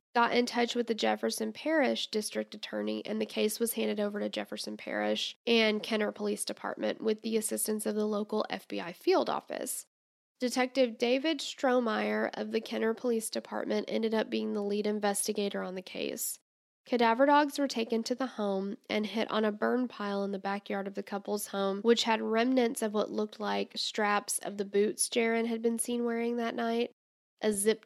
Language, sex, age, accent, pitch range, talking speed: English, female, 10-29, American, 200-240 Hz, 190 wpm